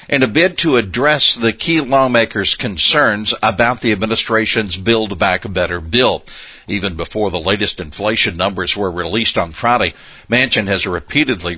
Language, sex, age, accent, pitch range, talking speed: English, male, 60-79, American, 95-115 Hz, 155 wpm